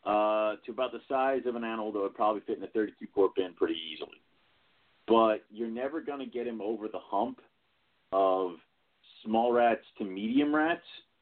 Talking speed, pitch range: 185 wpm, 100-120 Hz